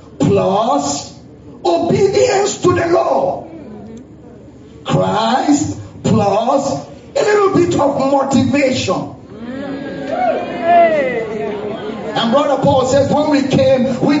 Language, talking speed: English, 85 wpm